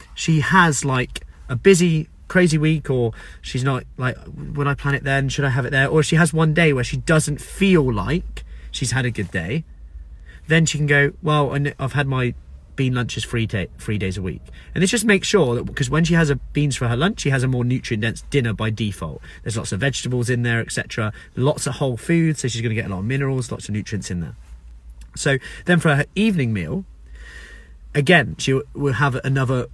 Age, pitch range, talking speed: 30-49, 110-145 Hz, 225 wpm